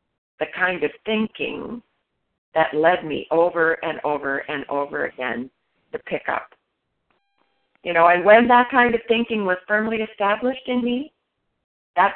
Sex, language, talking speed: female, English, 150 wpm